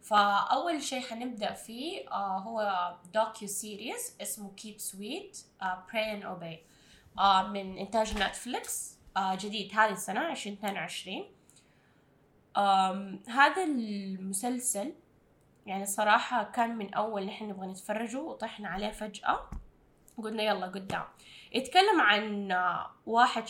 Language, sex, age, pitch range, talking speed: Arabic, female, 10-29, 195-235 Hz, 105 wpm